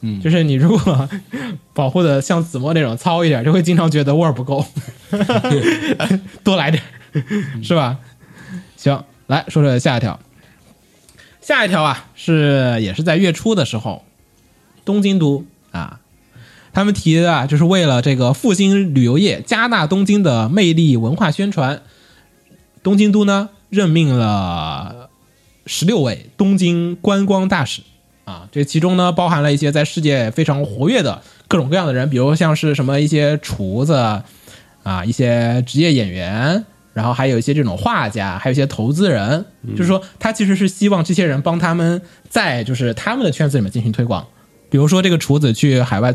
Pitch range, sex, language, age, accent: 125-180 Hz, male, Chinese, 20-39, native